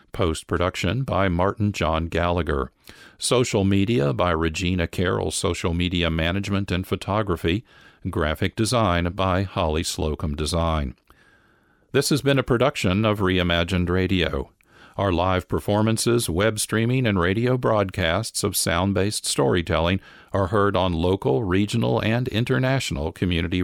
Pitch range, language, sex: 85-110 Hz, English, male